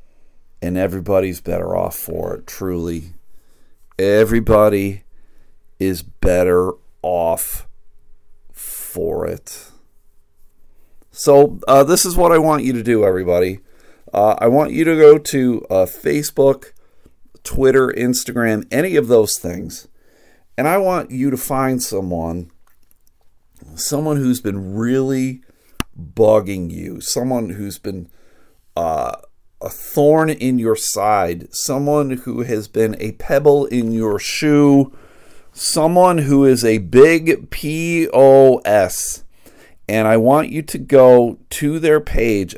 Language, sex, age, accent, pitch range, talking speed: English, male, 40-59, American, 95-145 Hz, 120 wpm